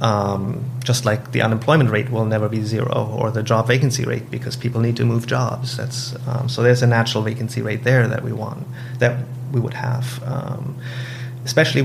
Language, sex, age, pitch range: English, male, 30-49, 115-130 Hz